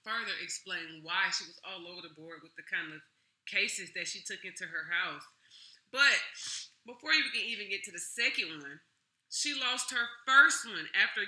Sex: female